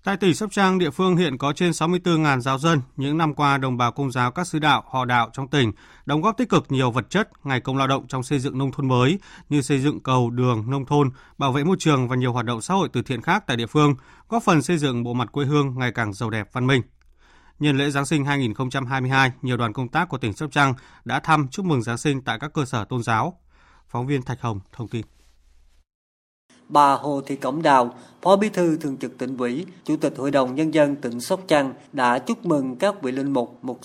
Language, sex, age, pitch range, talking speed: Vietnamese, male, 20-39, 125-165 Hz, 250 wpm